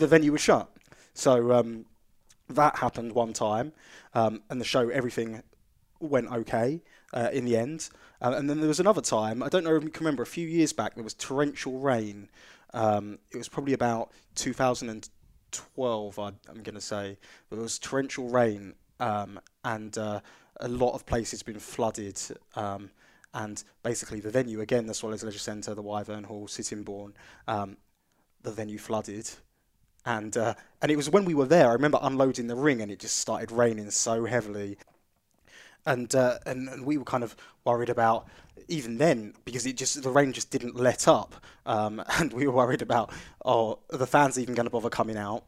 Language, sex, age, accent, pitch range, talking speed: English, male, 20-39, British, 110-135 Hz, 190 wpm